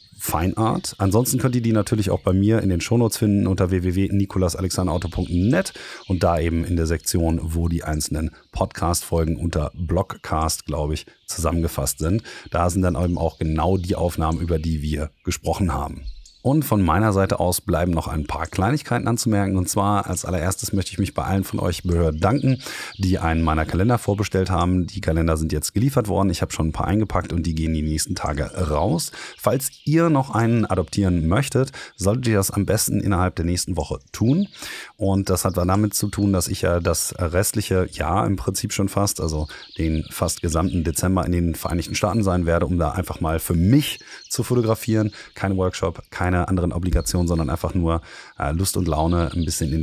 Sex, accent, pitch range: male, German, 85-100 Hz